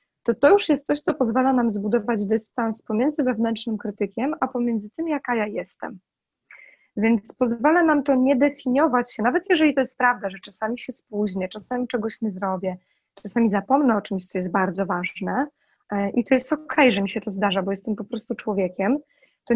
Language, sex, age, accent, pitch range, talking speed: Polish, female, 20-39, native, 210-265 Hz, 190 wpm